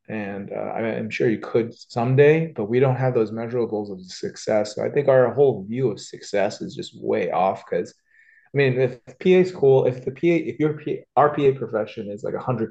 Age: 20-39